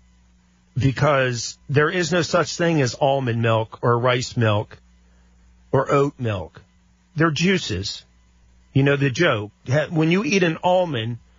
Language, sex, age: English, male, 40-59